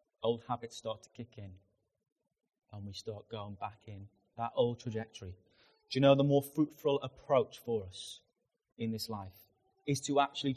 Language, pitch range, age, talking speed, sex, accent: English, 115-155 Hz, 30-49, 170 wpm, male, British